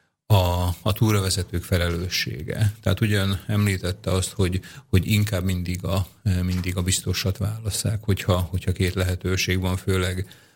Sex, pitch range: male, 90-105 Hz